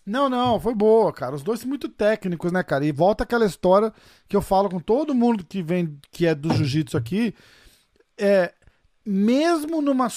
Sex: male